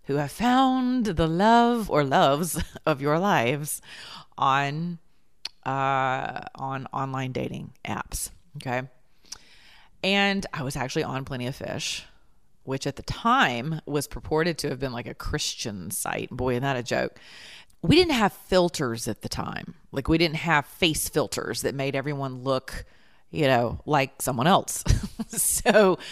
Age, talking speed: 30-49, 150 wpm